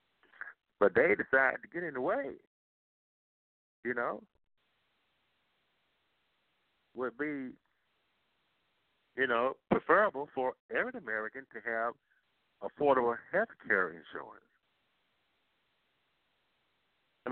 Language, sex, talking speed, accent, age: English, male, 85 wpm, American, 50-69